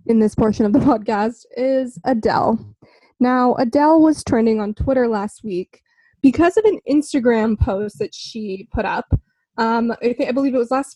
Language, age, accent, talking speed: English, 20-39, American, 175 wpm